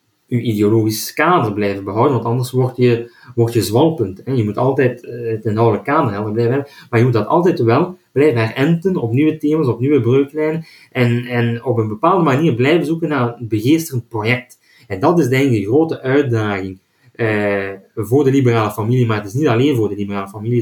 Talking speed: 195 wpm